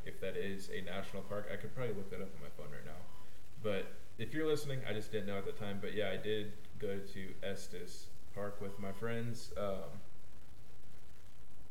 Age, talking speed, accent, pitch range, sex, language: 20-39, 205 wpm, American, 95-105 Hz, male, English